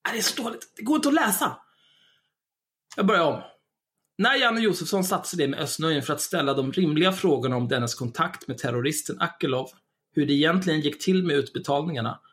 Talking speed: 185 wpm